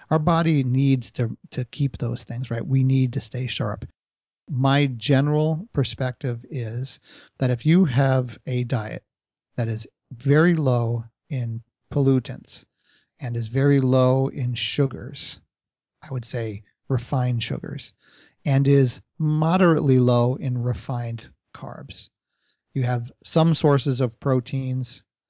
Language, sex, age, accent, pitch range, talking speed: English, male, 40-59, American, 120-140 Hz, 130 wpm